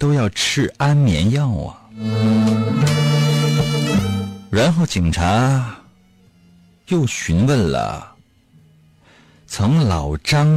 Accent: native